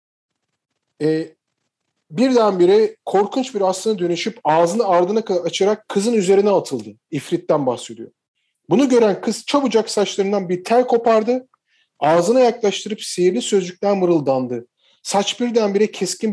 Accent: native